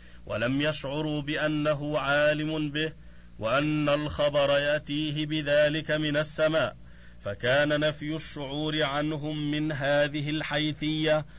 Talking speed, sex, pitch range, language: 95 wpm, male, 145-155 Hz, Arabic